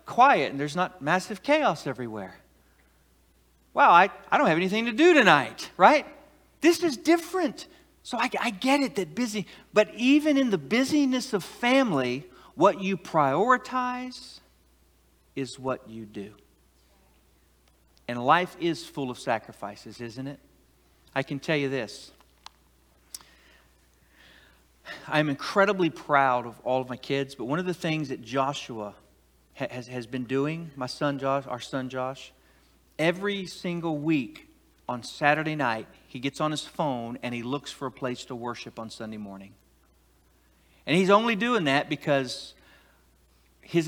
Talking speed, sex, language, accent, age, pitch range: 150 wpm, male, English, American, 50-69, 100-170 Hz